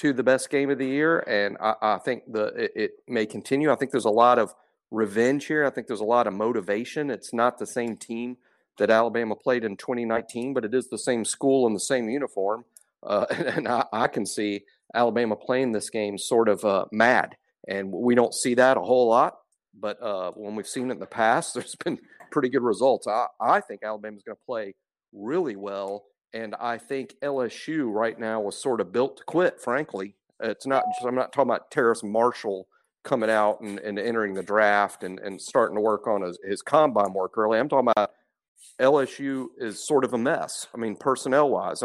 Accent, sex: American, male